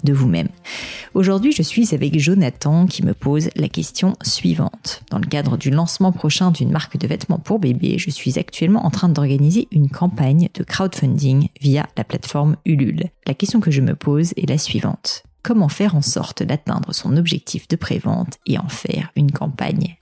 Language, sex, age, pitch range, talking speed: French, female, 30-49, 145-180 Hz, 185 wpm